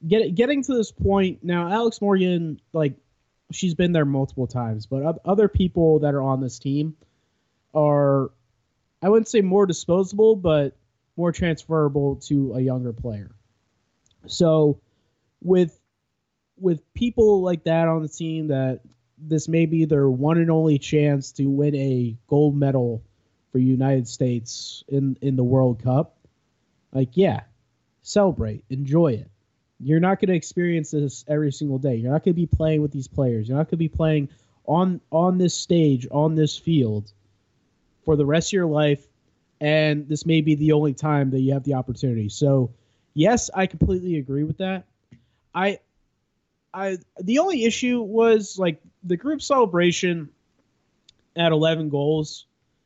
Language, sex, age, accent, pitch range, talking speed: English, male, 20-39, American, 135-175 Hz, 155 wpm